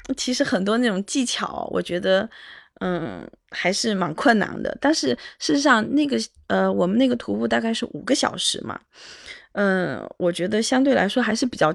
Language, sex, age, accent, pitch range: Chinese, female, 20-39, native, 195-270 Hz